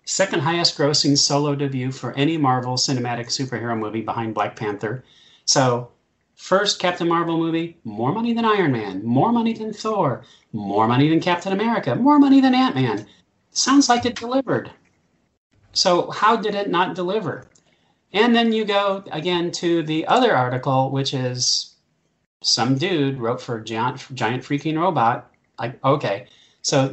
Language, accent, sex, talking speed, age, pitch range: English, American, male, 155 wpm, 40-59, 120-170 Hz